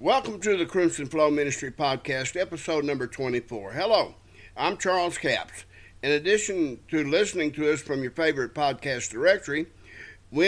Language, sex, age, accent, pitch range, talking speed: English, male, 60-79, American, 130-170 Hz, 150 wpm